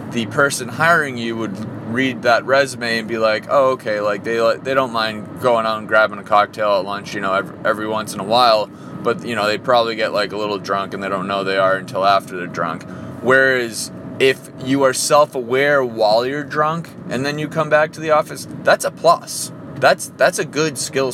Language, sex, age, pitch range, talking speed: English, male, 20-39, 115-150 Hz, 220 wpm